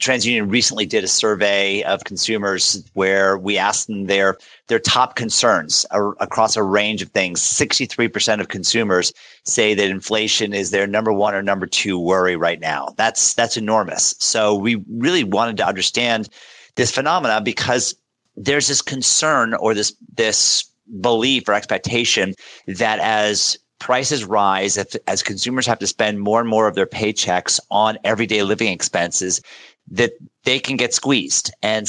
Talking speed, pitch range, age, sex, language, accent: 155 wpm, 100-120 Hz, 40-59, male, English, American